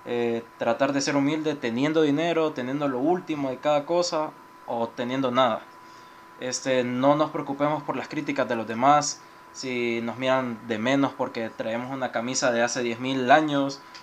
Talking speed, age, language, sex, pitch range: 165 wpm, 20-39, Spanish, male, 120-145 Hz